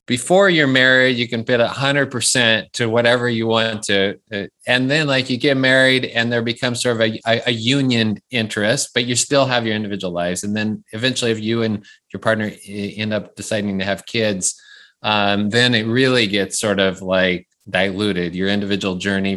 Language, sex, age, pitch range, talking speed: English, male, 30-49, 105-135 Hz, 200 wpm